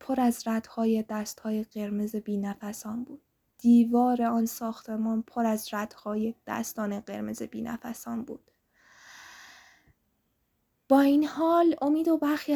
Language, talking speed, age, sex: Persian, 110 wpm, 10-29, female